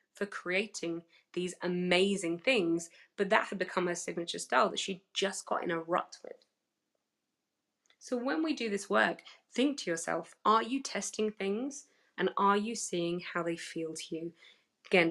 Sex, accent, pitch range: female, British, 175-235 Hz